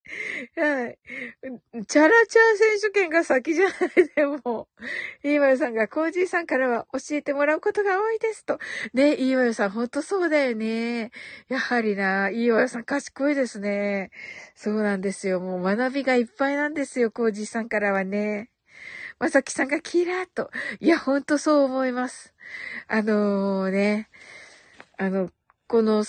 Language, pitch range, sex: Japanese, 210-285 Hz, female